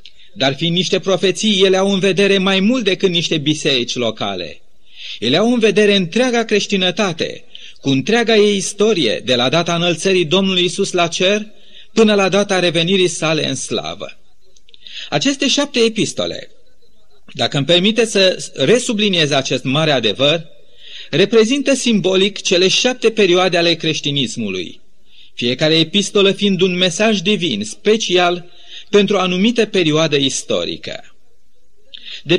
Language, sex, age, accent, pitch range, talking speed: Romanian, male, 30-49, native, 170-210 Hz, 130 wpm